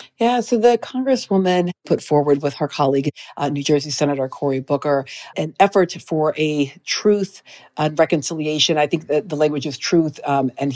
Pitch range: 145-180 Hz